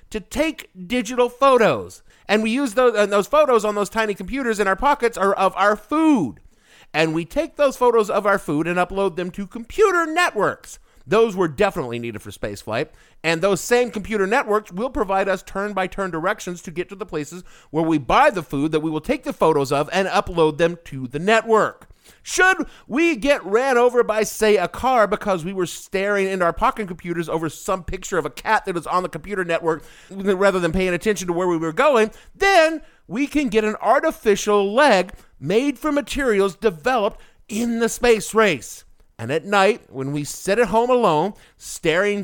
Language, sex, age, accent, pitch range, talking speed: English, male, 50-69, American, 175-225 Hz, 195 wpm